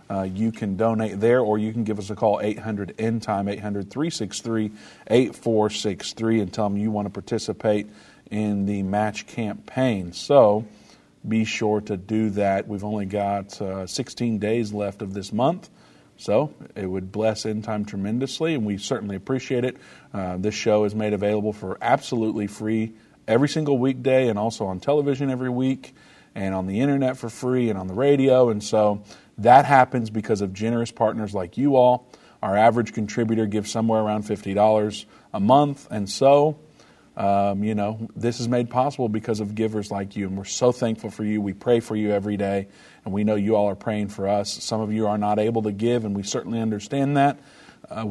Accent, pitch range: American, 100-115 Hz